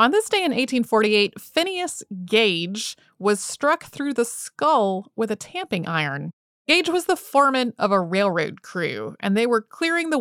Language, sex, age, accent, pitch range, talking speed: English, female, 30-49, American, 180-235 Hz, 170 wpm